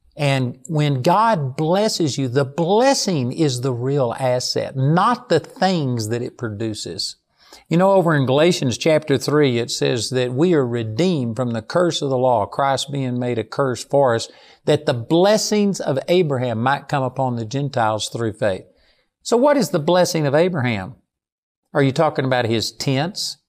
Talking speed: 175 wpm